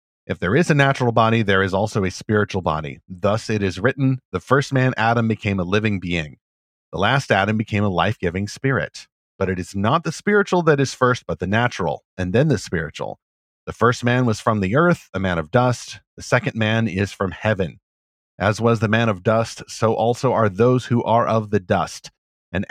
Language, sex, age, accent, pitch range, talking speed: English, male, 40-59, American, 100-130 Hz, 210 wpm